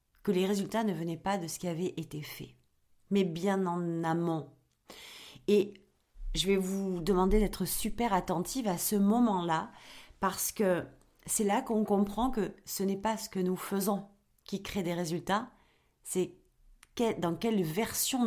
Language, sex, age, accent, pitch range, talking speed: French, female, 40-59, French, 175-230 Hz, 160 wpm